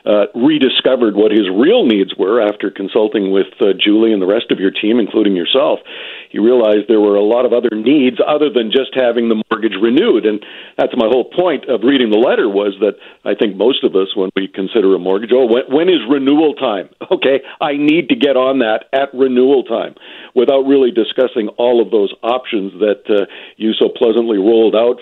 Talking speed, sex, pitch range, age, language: 210 wpm, male, 115-170 Hz, 50-69, English